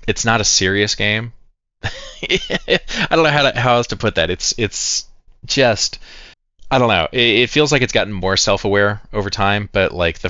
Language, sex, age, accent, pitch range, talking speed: English, male, 20-39, American, 80-105 Hz, 200 wpm